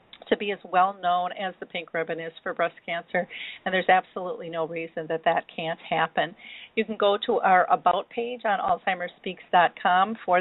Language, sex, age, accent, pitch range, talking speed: English, female, 40-59, American, 175-210 Hz, 180 wpm